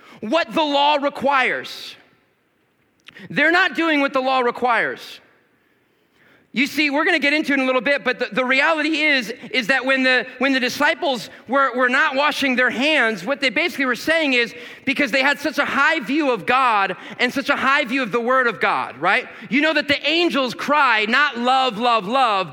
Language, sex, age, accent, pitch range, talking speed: English, male, 40-59, American, 260-310 Hz, 205 wpm